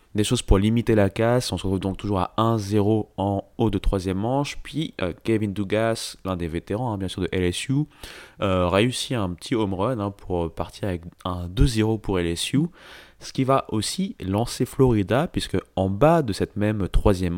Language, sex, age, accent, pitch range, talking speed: French, male, 20-39, French, 90-110 Hz, 195 wpm